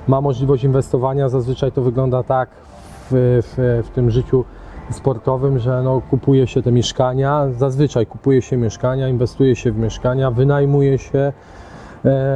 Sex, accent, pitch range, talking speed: male, native, 125-145 Hz, 145 wpm